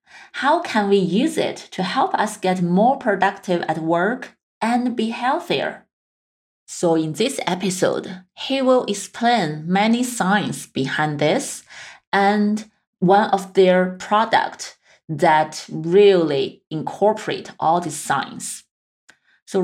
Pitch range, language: 160-215 Hz, English